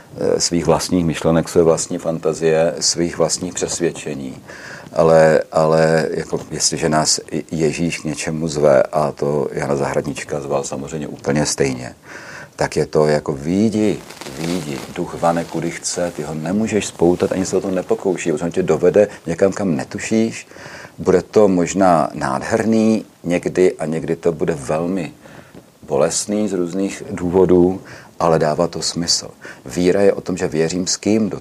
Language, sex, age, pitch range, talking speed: Czech, male, 40-59, 80-95 Hz, 150 wpm